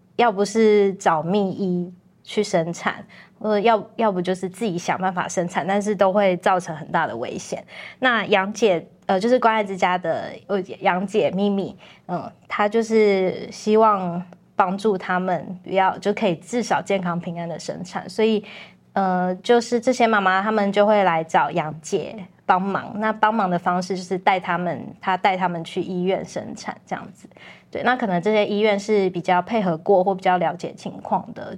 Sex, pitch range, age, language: female, 180-210 Hz, 20-39, Chinese